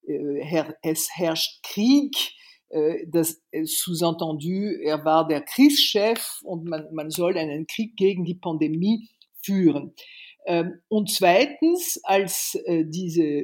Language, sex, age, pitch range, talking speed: German, female, 50-69, 160-200 Hz, 105 wpm